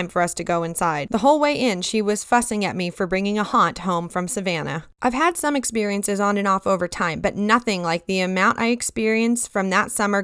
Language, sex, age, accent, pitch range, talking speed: English, female, 20-39, American, 185-245 Hz, 235 wpm